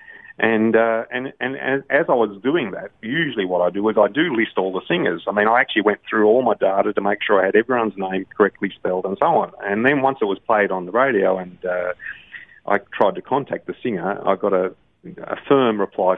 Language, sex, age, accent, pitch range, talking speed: English, male, 30-49, Australian, 95-110 Hz, 235 wpm